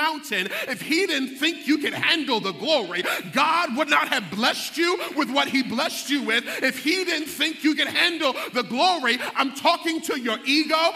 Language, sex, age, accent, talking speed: English, male, 30-49, American, 190 wpm